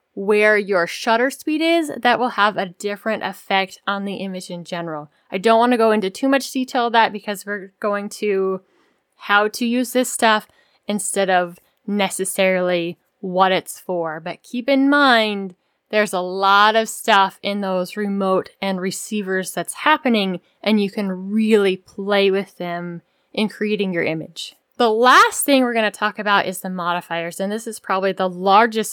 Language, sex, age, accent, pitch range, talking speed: English, female, 10-29, American, 190-230 Hz, 175 wpm